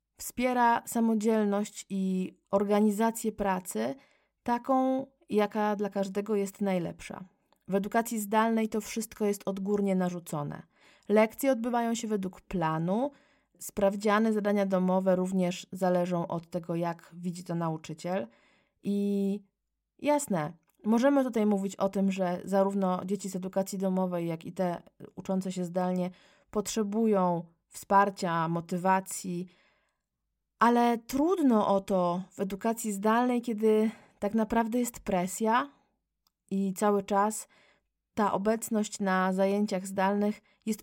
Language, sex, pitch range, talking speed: Polish, female, 190-220 Hz, 115 wpm